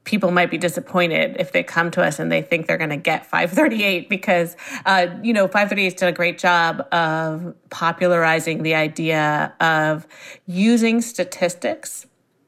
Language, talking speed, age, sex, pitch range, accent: English, 160 wpm, 30-49, female, 165-200 Hz, American